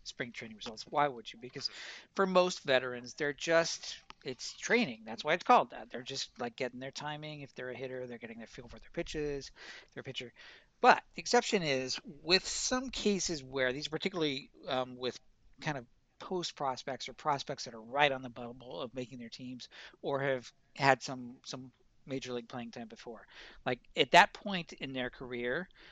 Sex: male